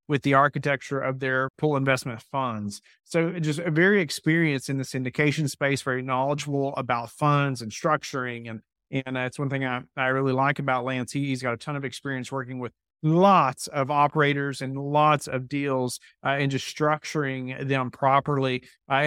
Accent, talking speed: American, 175 wpm